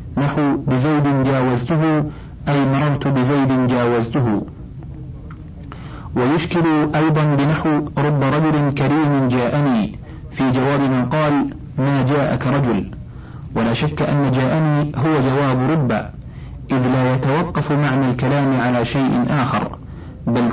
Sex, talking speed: male, 110 wpm